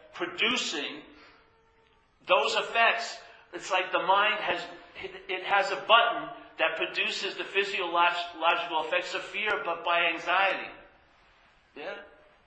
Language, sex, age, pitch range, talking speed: English, male, 50-69, 155-190 Hz, 110 wpm